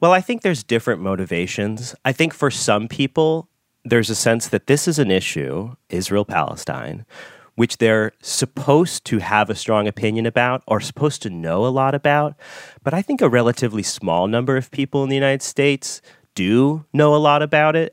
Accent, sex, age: American, male, 30-49